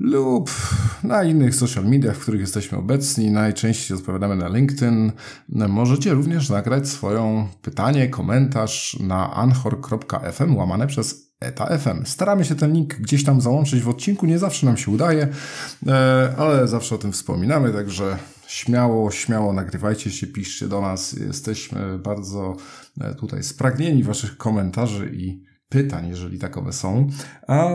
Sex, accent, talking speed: male, native, 140 wpm